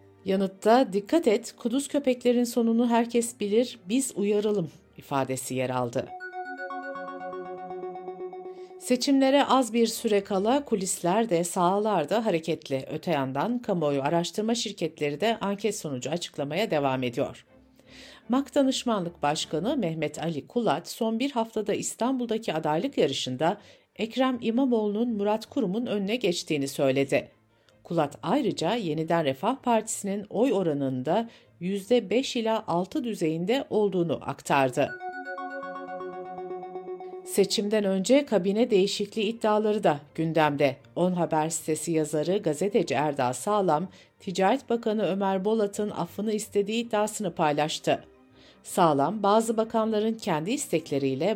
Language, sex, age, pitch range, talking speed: Turkish, female, 60-79, 160-230 Hz, 110 wpm